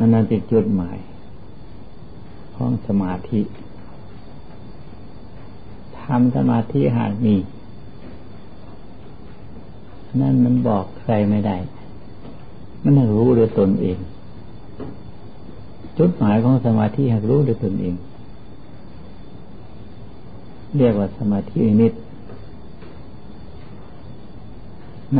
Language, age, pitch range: Thai, 60-79, 100-120 Hz